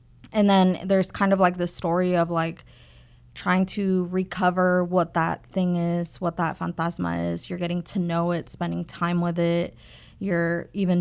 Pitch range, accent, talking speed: 170-185 Hz, American, 175 wpm